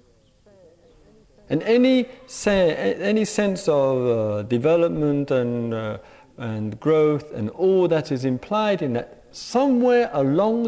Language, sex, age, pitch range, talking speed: English, male, 50-69, 135-190 Hz, 120 wpm